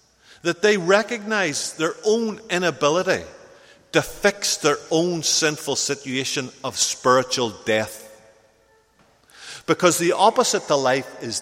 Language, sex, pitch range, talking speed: English, male, 130-200 Hz, 110 wpm